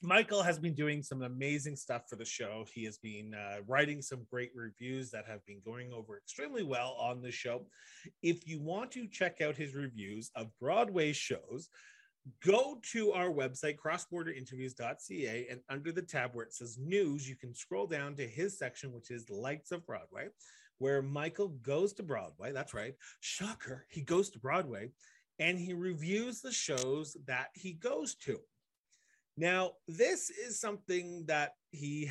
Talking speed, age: 170 wpm, 30-49